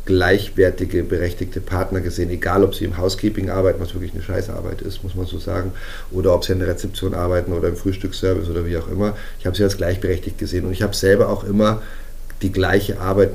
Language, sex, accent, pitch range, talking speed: German, male, German, 90-100 Hz, 215 wpm